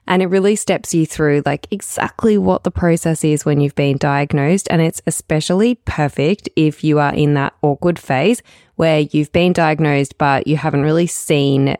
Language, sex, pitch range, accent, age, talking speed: English, female, 145-185 Hz, Australian, 20-39, 185 wpm